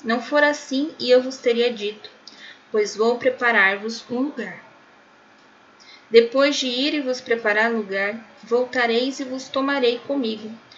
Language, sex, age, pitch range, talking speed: Portuguese, female, 10-29, 215-260 Hz, 140 wpm